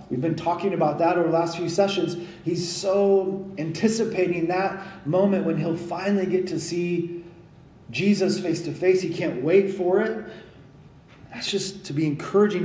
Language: English